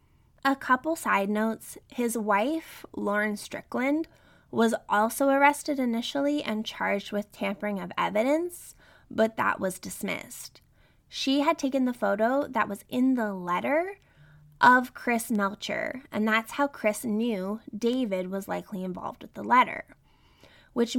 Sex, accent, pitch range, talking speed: female, American, 205-270 Hz, 135 wpm